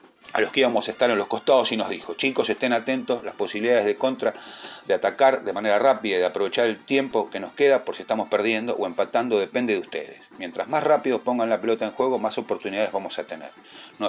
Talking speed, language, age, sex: 235 wpm, Spanish, 40-59, male